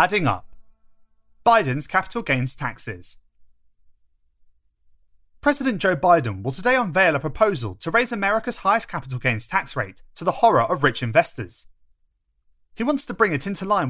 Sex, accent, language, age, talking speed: male, British, English, 30-49, 150 wpm